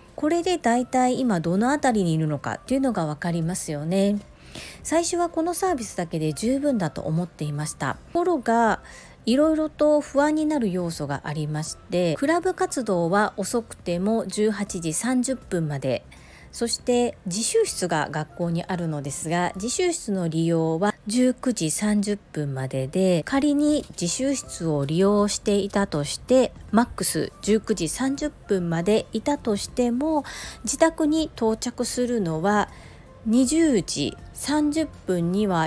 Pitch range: 160-255 Hz